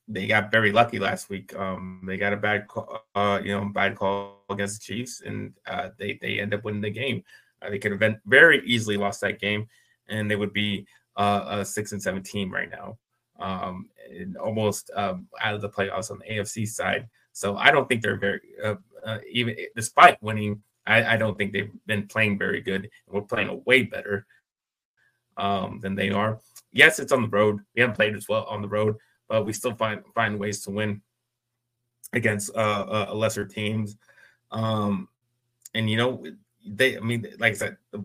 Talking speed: 205 wpm